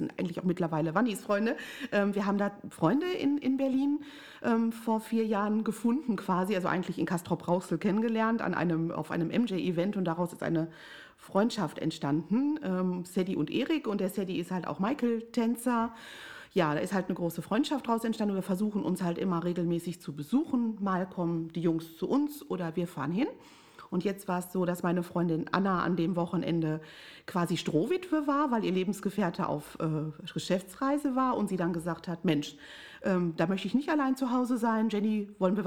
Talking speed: 185 wpm